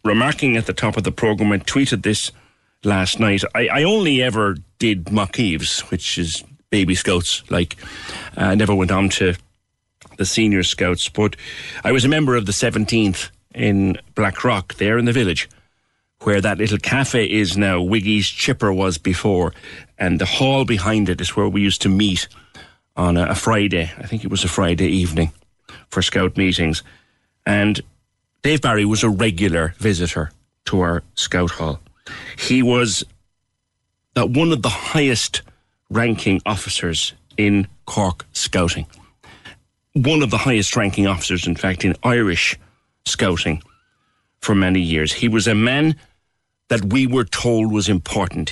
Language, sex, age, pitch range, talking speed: English, male, 40-59, 90-115 Hz, 155 wpm